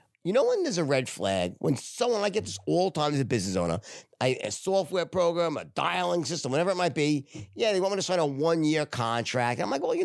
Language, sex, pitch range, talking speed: English, male, 130-180 Hz, 255 wpm